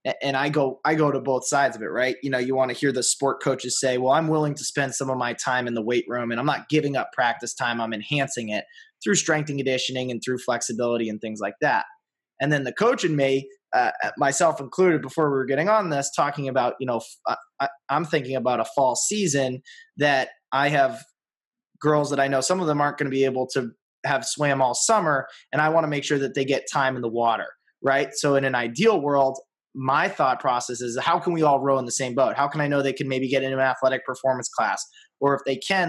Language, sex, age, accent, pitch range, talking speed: English, male, 20-39, American, 130-150 Hz, 250 wpm